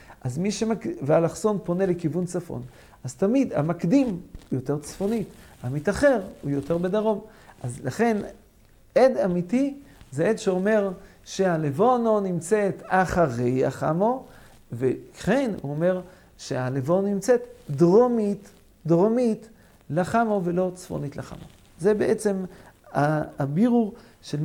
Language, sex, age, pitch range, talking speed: English, male, 50-69, 155-215 Hz, 100 wpm